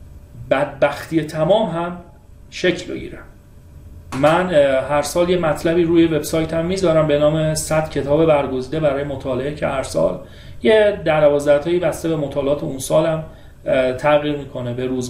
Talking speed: 135 wpm